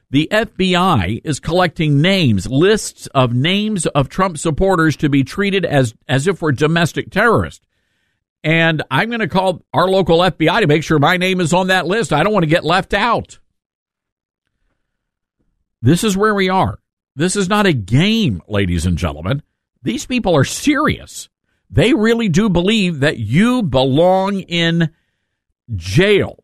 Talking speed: 160 wpm